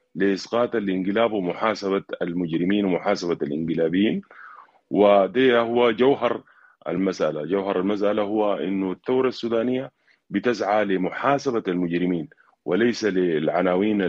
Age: 30-49